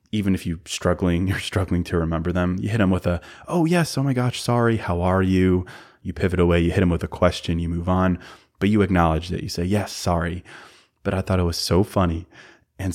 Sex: male